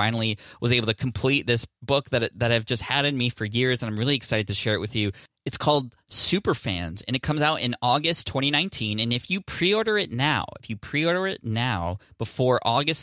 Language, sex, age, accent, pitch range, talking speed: English, male, 20-39, American, 100-125 Hz, 220 wpm